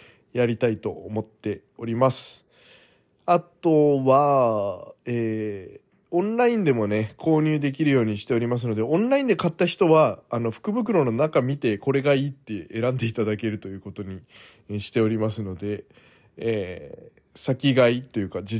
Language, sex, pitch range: Japanese, male, 110-145 Hz